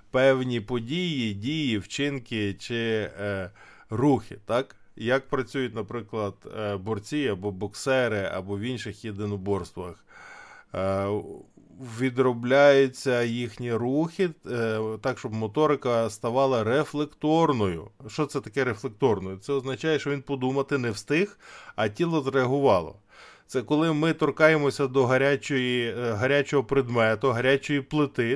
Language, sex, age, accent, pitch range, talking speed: Ukrainian, male, 20-39, native, 115-145 Hz, 110 wpm